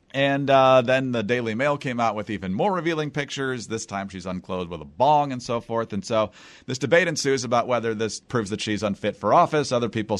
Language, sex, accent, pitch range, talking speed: English, male, American, 105-135 Hz, 230 wpm